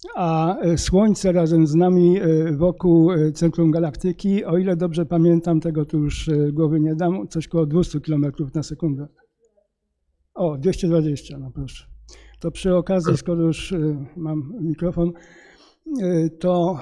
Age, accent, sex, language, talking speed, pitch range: 50-69, native, male, Polish, 130 wpm, 160-175 Hz